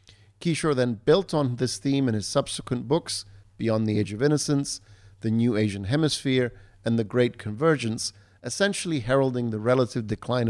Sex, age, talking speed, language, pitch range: male, 50-69, 160 wpm, English, 105-130 Hz